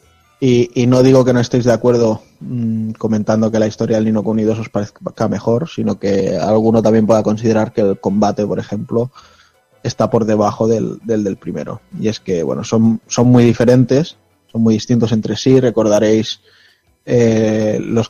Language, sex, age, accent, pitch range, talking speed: Spanish, male, 20-39, Spanish, 110-125 Hz, 180 wpm